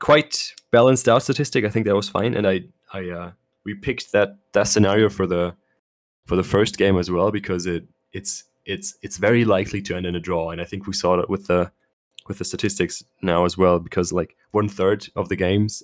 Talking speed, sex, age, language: 225 wpm, male, 20-39, English